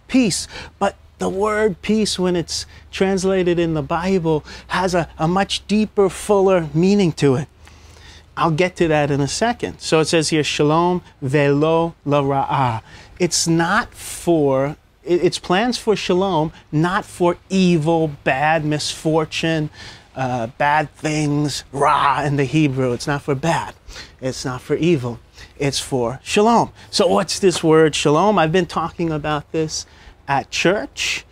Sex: male